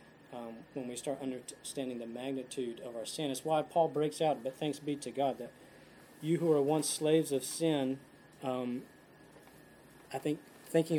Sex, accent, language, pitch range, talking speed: male, American, English, 130-155 Hz, 175 wpm